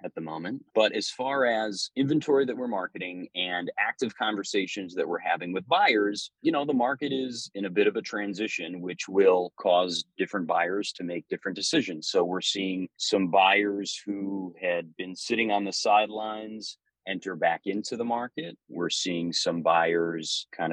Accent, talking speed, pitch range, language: American, 175 wpm, 95-125 Hz, English